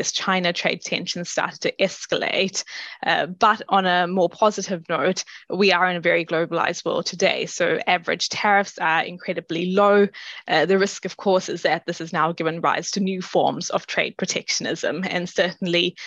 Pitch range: 175-195 Hz